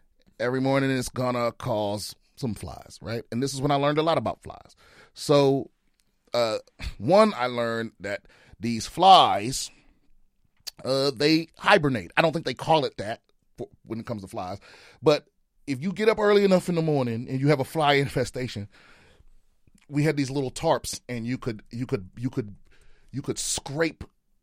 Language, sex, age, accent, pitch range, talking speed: English, male, 30-49, American, 120-155 Hz, 175 wpm